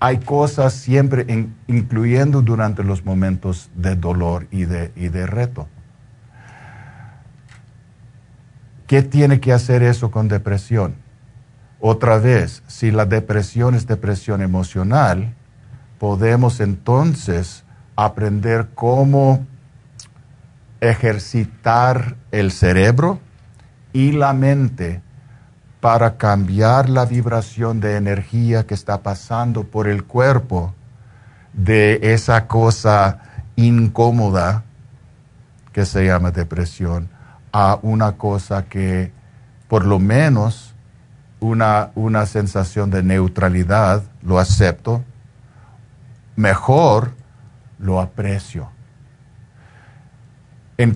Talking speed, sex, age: 90 wpm, male, 50-69